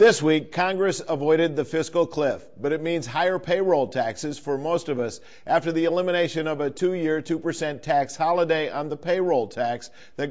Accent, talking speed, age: American, 180 wpm, 50-69